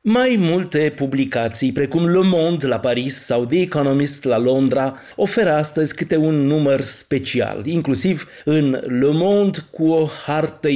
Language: Romanian